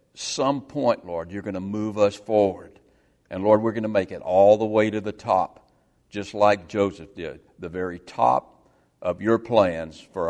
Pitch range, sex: 85-105 Hz, male